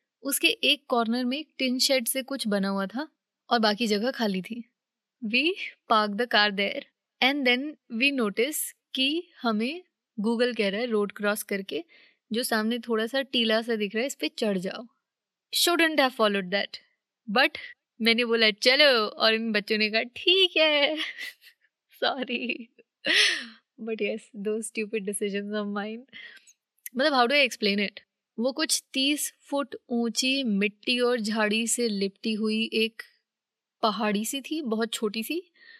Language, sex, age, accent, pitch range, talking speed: Hindi, female, 20-39, native, 215-270 Hz, 145 wpm